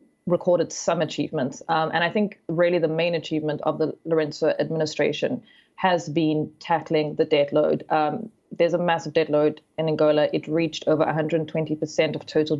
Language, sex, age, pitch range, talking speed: English, female, 20-39, 155-175 Hz, 170 wpm